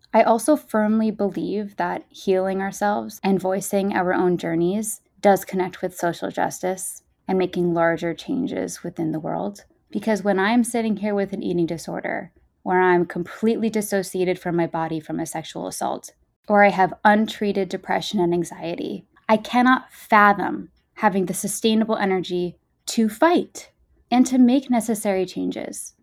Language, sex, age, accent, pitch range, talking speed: English, female, 20-39, American, 180-215 Hz, 150 wpm